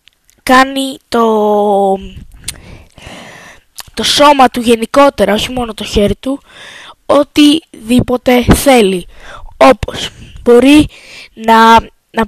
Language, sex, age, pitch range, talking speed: Greek, female, 20-39, 225-265 Hz, 85 wpm